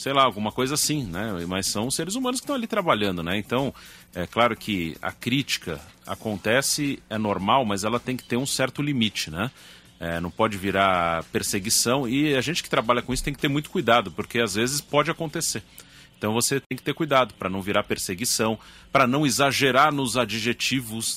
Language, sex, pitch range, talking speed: Portuguese, male, 95-130 Hz, 200 wpm